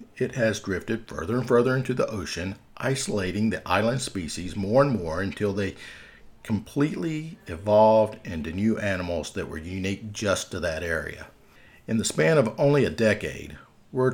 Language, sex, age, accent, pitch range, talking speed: English, male, 50-69, American, 95-120 Hz, 160 wpm